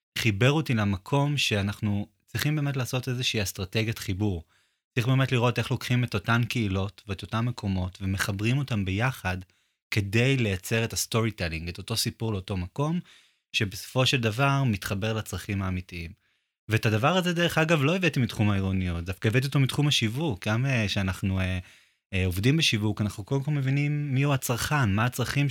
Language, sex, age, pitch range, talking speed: Hebrew, male, 20-39, 100-130 Hz, 155 wpm